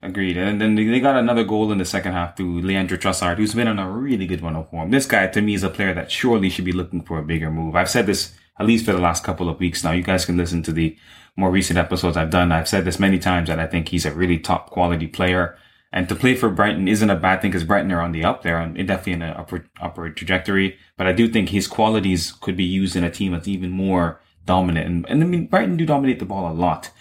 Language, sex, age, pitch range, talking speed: English, male, 20-39, 85-100 Hz, 280 wpm